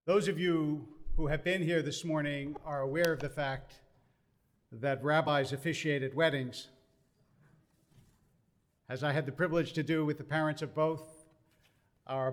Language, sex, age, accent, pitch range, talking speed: English, male, 50-69, American, 145-180 Hz, 155 wpm